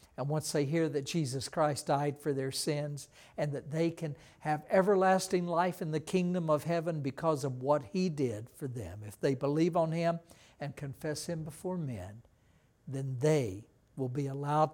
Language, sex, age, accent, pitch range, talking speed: English, male, 60-79, American, 130-175 Hz, 185 wpm